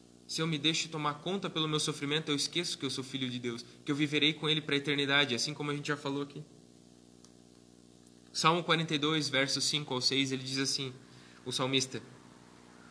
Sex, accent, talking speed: male, Brazilian, 200 wpm